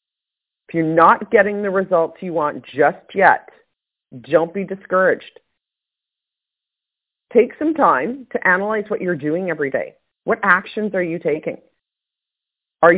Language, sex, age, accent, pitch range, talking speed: English, female, 40-59, American, 160-225 Hz, 145 wpm